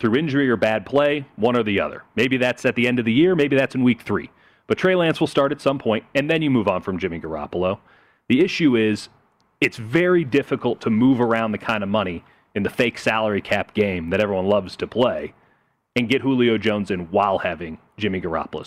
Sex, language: male, English